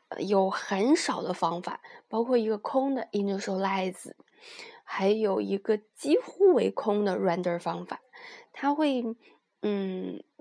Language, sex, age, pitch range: Chinese, female, 20-39, 190-270 Hz